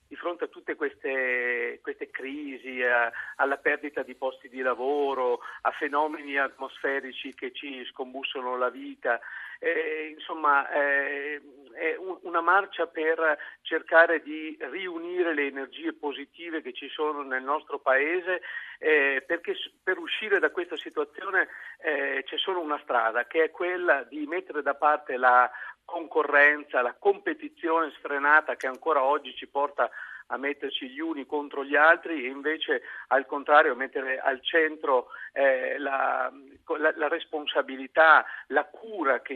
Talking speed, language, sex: 140 wpm, Italian, male